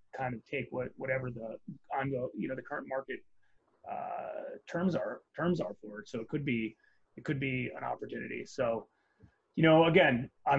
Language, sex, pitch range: English, male, 130-150 Hz